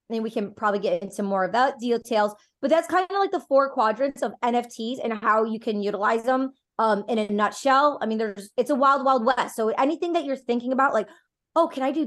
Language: English